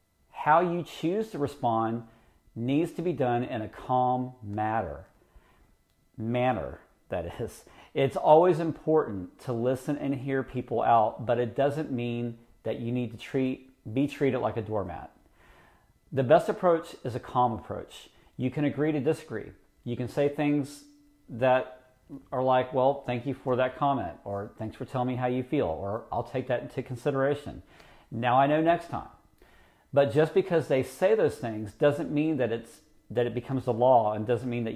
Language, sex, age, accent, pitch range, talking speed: English, male, 40-59, American, 115-145 Hz, 180 wpm